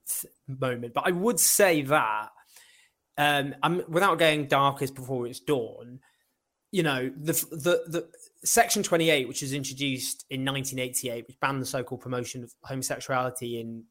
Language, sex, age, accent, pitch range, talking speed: English, male, 20-39, British, 125-160 Hz, 145 wpm